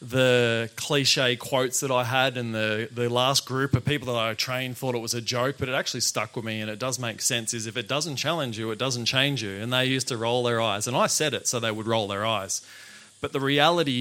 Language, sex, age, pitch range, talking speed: English, male, 20-39, 120-145 Hz, 265 wpm